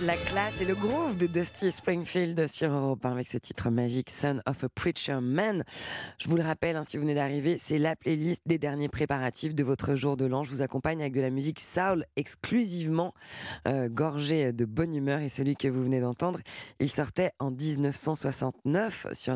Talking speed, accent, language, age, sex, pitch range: 200 wpm, French, French, 20-39, female, 130-165 Hz